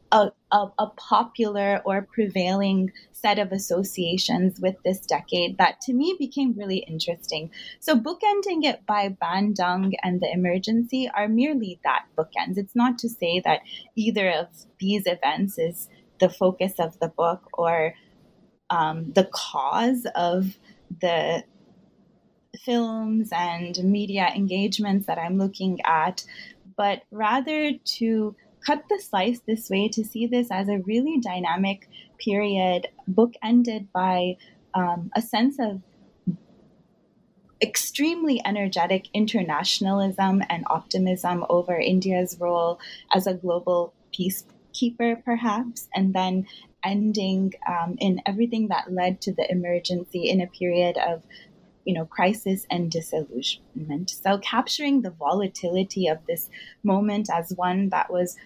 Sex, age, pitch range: female, 20-39, 180-220 Hz